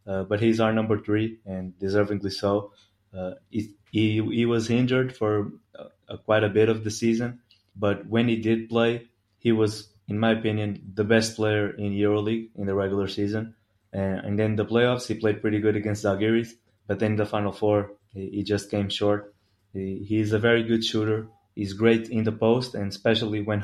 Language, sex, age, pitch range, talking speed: English, male, 20-39, 100-115 Hz, 200 wpm